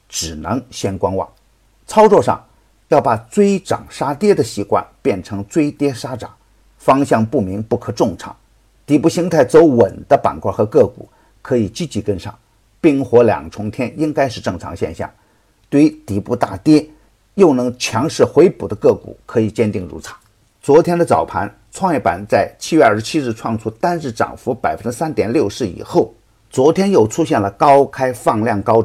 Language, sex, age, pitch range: Chinese, male, 50-69, 105-150 Hz